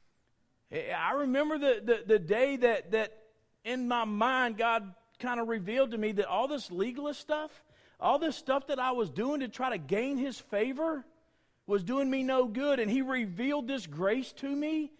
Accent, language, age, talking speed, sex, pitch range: American, English, 40-59, 190 wpm, male, 150-250 Hz